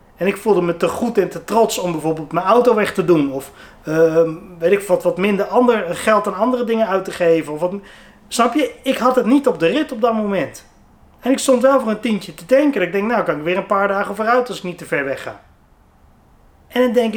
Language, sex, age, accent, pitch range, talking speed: Dutch, male, 30-49, Dutch, 175-245 Hz, 260 wpm